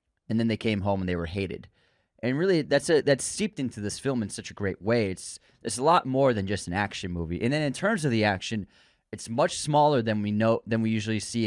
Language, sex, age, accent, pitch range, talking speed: English, male, 20-39, American, 95-135 Hz, 260 wpm